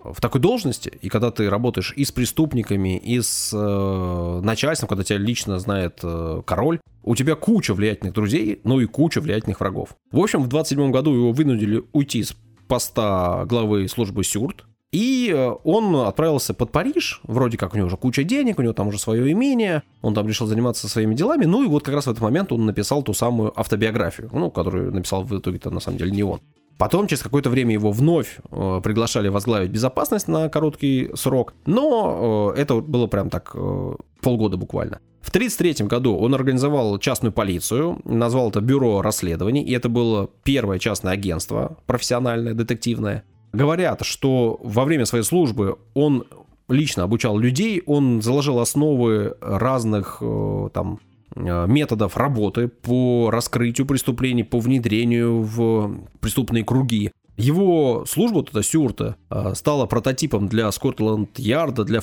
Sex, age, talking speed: male, 20-39, 160 wpm